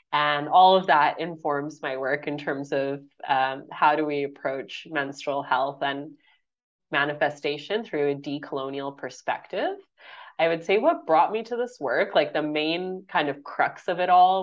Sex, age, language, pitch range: female, 20-39, English, 145-180 Hz